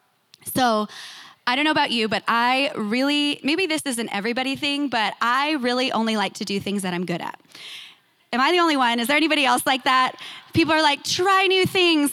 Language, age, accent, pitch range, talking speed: English, 20-39, American, 245-320 Hz, 220 wpm